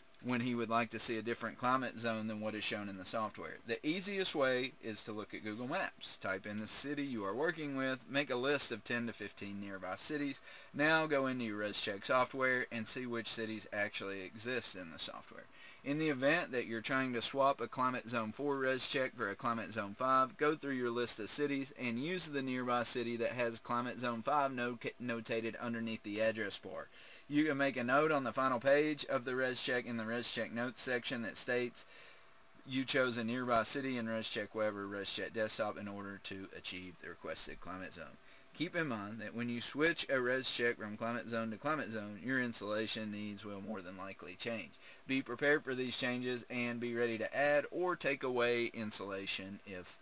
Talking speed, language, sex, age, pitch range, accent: 215 wpm, English, male, 30-49, 110-135 Hz, American